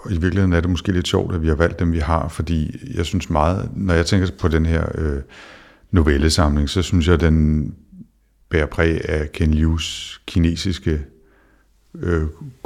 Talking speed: 180 wpm